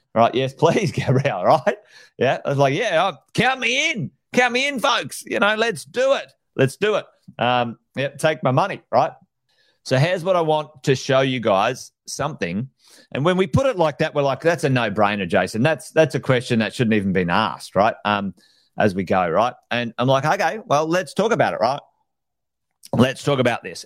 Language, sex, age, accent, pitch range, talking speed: English, male, 40-59, Australian, 110-150 Hz, 210 wpm